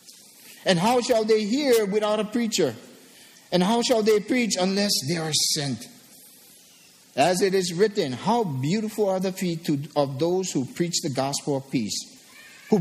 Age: 50-69